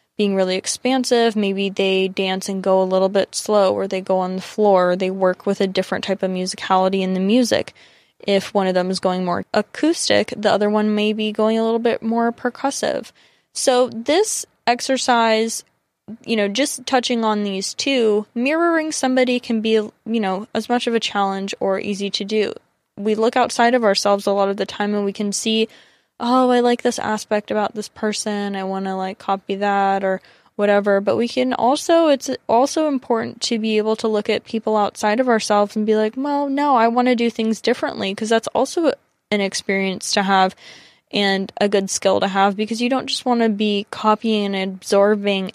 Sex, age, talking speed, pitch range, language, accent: female, 10-29, 200 wpm, 195-235 Hz, English, American